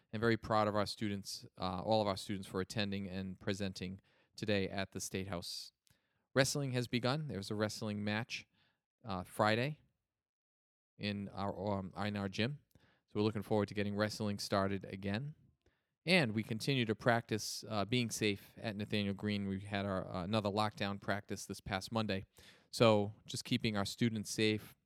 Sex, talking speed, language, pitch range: male, 175 wpm, English, 100-115 Hz